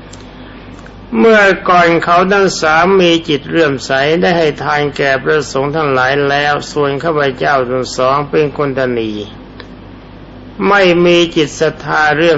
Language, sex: Thai, male